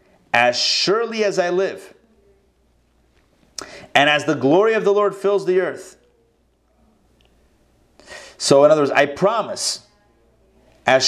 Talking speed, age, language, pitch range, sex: 120 wpm, 30-49, English, 140-200 Hz, male